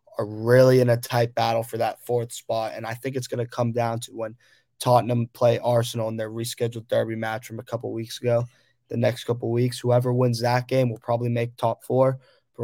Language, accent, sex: English, American, male